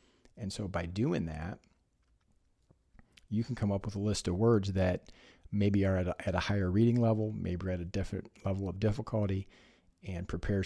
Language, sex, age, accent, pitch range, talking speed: English, male, 40-59, American, 95-105 Hz, 180 wpm